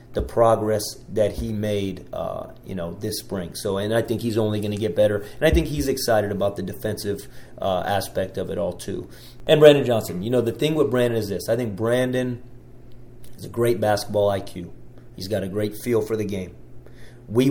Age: 30-49